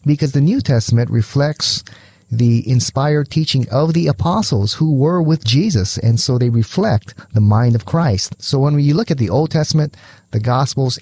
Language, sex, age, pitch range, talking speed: English, male, 30-49, 110-145 Hz, 180 wpm